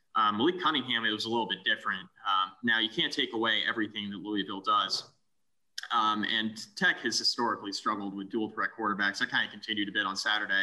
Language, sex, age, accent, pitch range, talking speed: English, male, 20-39, American, 105-115 Hz, 210 wpm